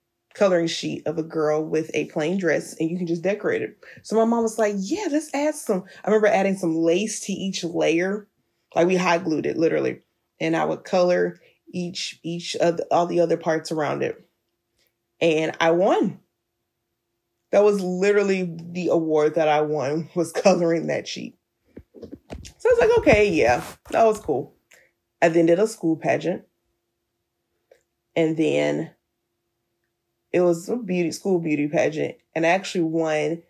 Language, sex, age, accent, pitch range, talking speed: English, female, 20-39, American, 160-195 Hz, 170 wpm